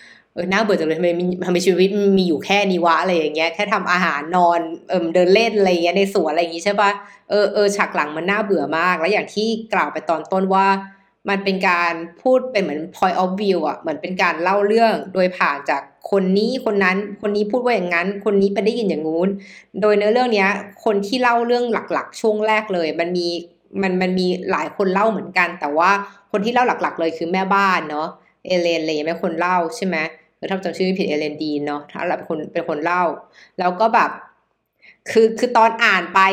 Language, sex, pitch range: Thai, female, 175-220 Hz